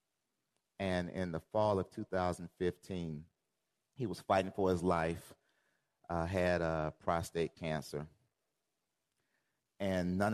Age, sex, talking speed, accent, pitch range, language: 30-49, male, 110 wpm, American, 80-95 Hz, English